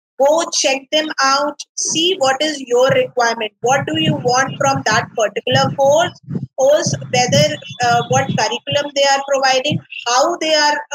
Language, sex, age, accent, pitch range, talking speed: English, female, 20-39, Indian, 240-290 Hz, 155 wpm